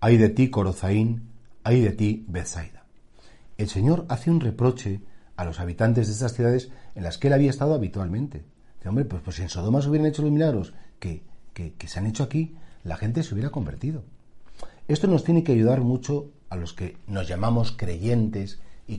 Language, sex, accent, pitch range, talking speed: Spanish, male, Spanish, 95-130 Hz, 200 wpm